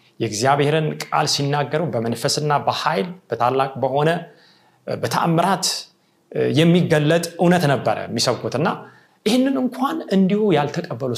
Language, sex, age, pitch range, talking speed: Amharic, male, 30-49, 140-200 Hz, 85 wpm